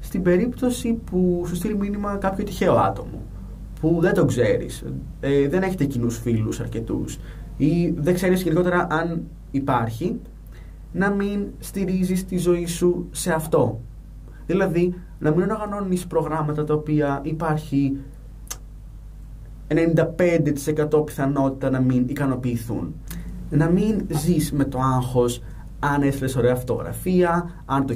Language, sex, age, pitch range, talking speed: Greek, male, 20-39, 120-170 Hz, 120 wpm